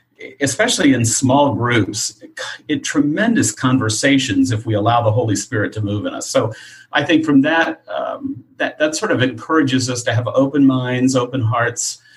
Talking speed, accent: 180 wpm, American